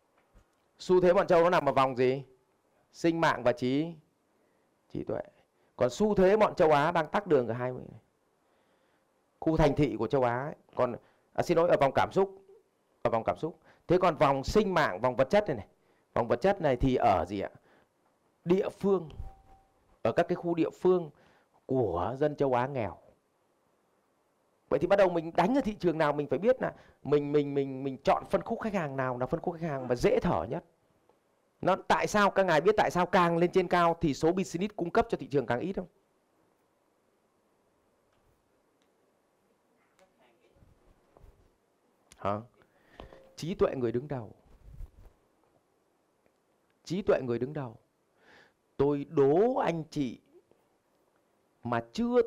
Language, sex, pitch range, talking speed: Vietnamese, male, 120-180 Hz, 175 wpm